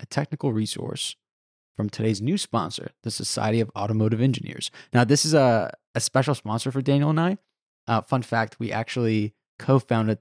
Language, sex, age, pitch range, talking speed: English, male, 20-39, 110-140 Hz, 170 wpm